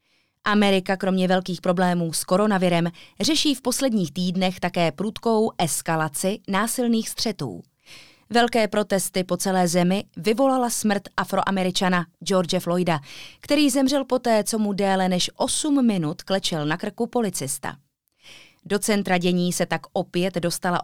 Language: Czech